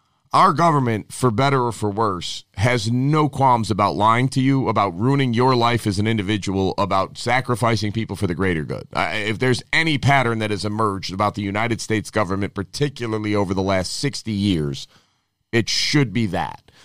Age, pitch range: 30-49, 100-135 Hz